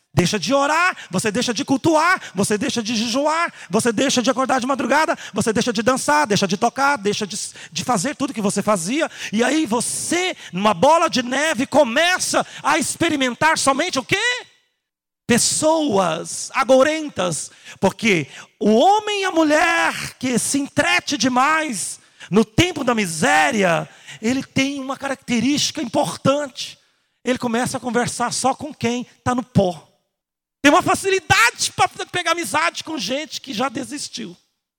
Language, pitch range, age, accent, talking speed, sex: Portuguese, 225-325 Hz, 40-59, Brazilian, 150 wpm, male